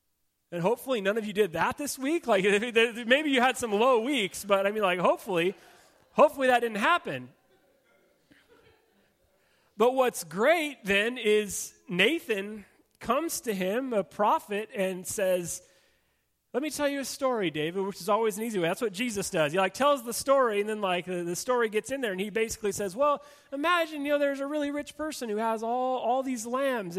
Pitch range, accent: 195-260 Hz, American